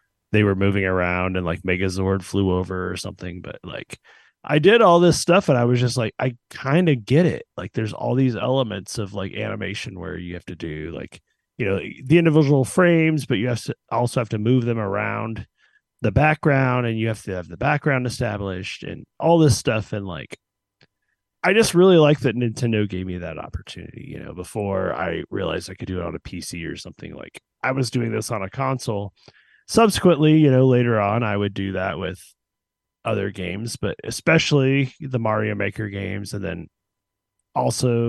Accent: American